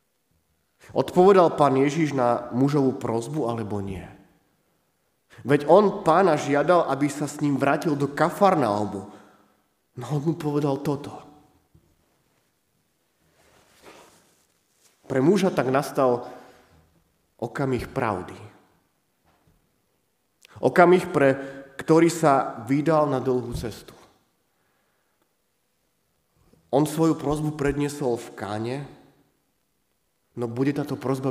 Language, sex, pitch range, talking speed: Slovak, male, 120-150 Hz, 90 wpm